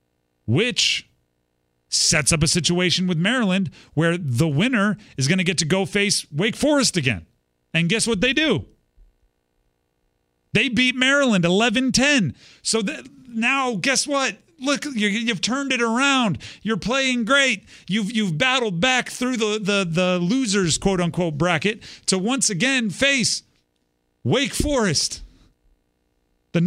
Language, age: English, 40-59